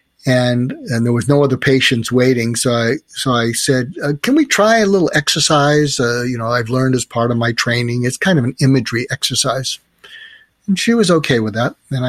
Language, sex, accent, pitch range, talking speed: English, male, American, 120-150 Hz, 215 wpm